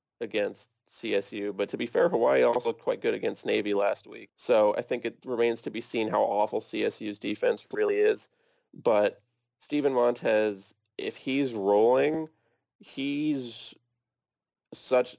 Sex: male